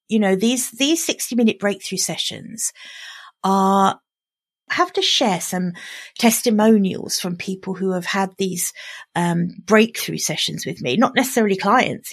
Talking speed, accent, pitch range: 140 wpm, British, 185-230 Hz